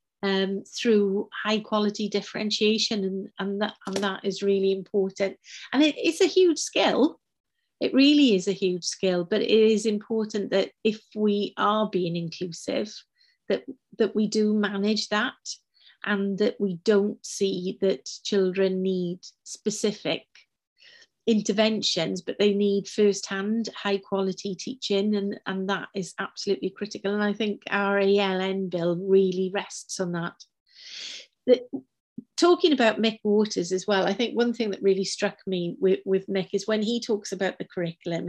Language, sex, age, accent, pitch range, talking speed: English, female, 40-59, British, 190-220 Hz, 150 wpm